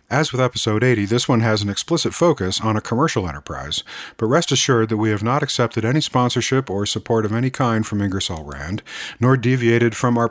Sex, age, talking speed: male, 40-59, 210 wpm